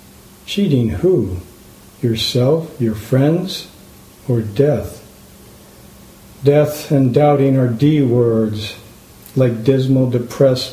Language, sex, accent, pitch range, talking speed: English, male, American, 120-140 Hz, 90 wpm